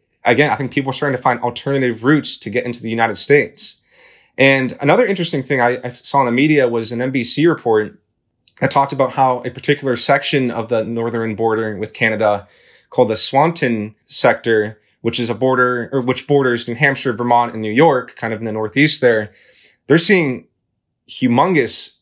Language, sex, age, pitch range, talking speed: English, male, 20-39, 115-140 Hz, 190 wpm